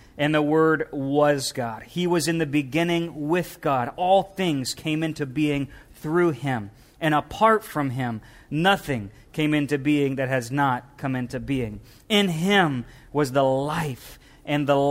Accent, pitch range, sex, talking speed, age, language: American, 140-170 Hz, male, 160 wpm, 40-59, English